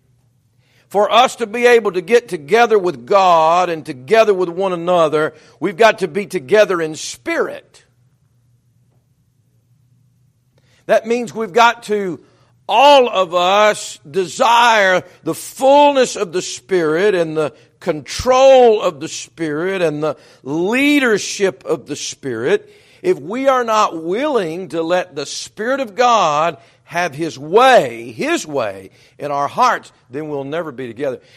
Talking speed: 140 wpm